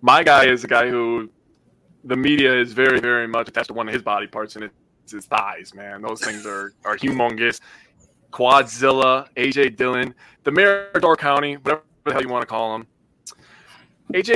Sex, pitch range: male, 115-140 Hz